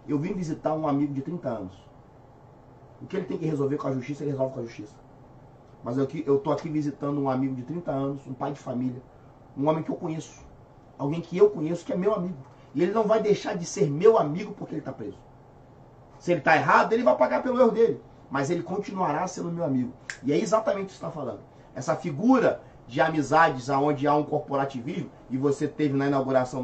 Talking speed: 225 wpm